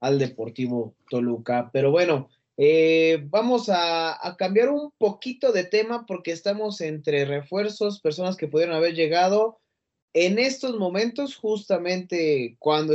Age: 20-39